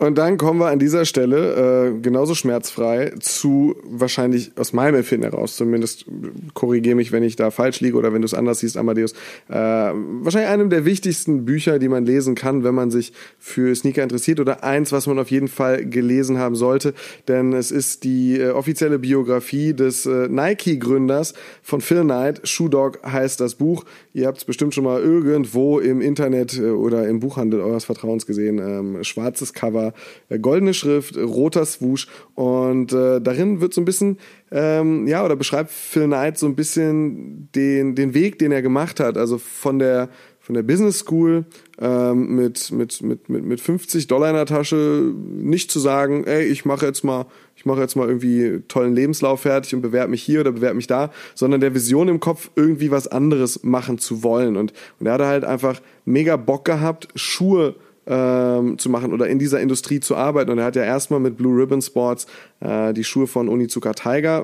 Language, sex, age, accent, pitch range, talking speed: German, male, 30-49, German, 125-150 Hz, 190 wpm